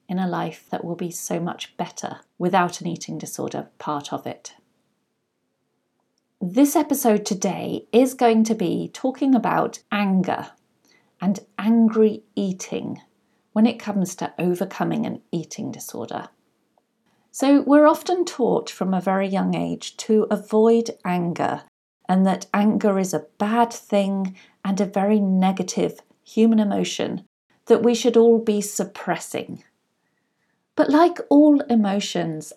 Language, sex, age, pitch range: English, female, 40-59, 190-235 Hz